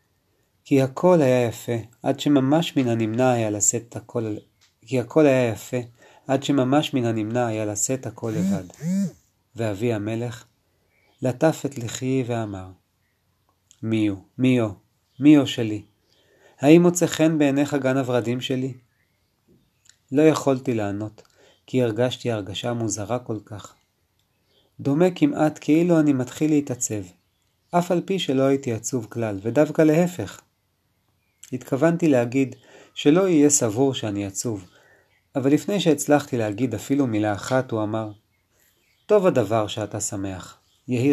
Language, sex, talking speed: Hebrew, male, 110 wpm